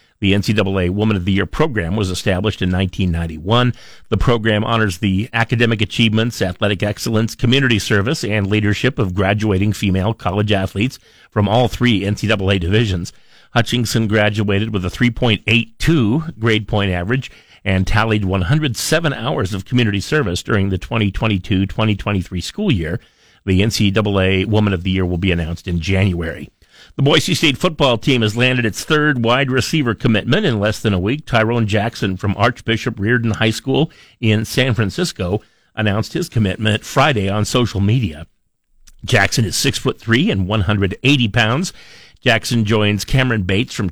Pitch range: 100-120 Hz